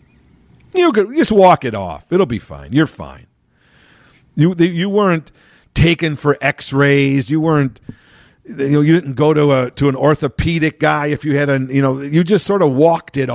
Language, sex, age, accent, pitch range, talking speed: English, male, 50-69, American, 100-145 Hz, 190 wpm